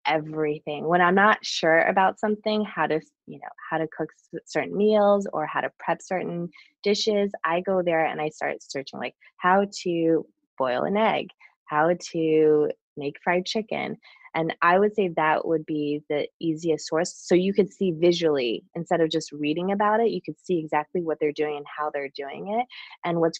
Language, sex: English, female